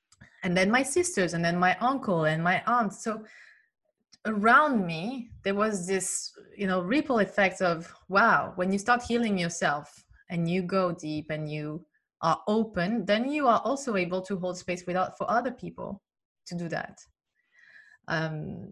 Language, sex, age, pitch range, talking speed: English, female, 20-39, 170-215 Hz, 165 wpm